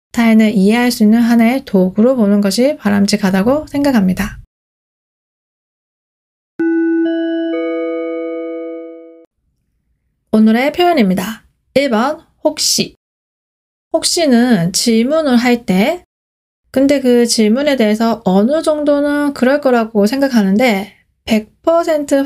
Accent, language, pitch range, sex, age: native, Korean, 200-285 Hz, female, 20-39